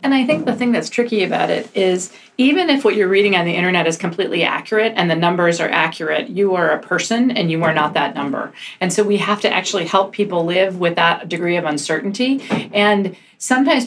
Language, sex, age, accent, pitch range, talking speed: English, female, 40-59, American, 170-215 Hz, 225 wpm